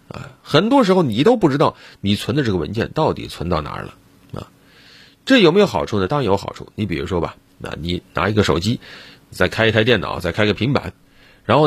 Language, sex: Chinese, male